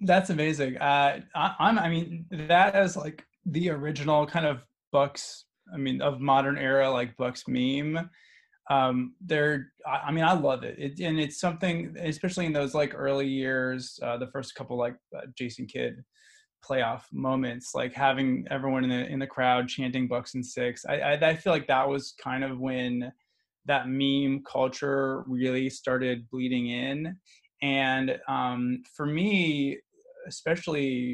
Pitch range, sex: 130-155 Hz, male